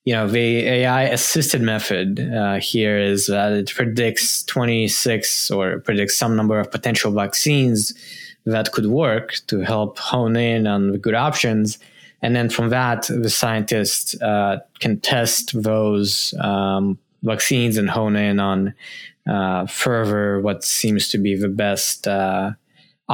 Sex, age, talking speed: male, 20-39, 145 wpm